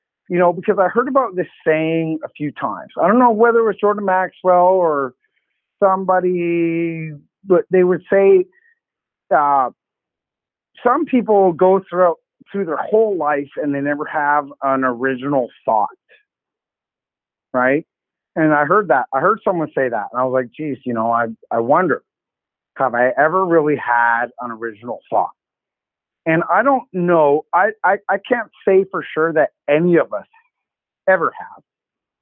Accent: American